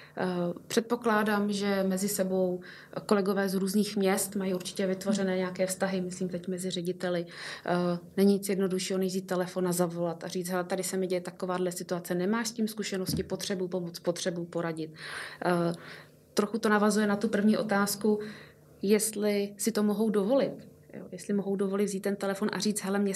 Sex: female